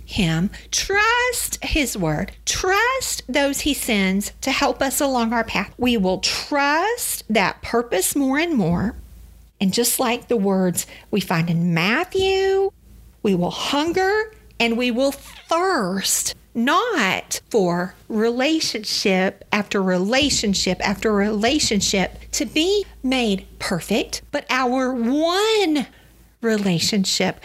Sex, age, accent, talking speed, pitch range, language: female, 50-69, American, 115 wpm, 195-285 Hz, English